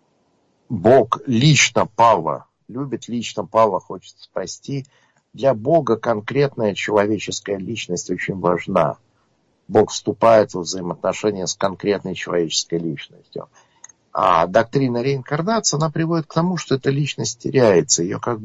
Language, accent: Russian, native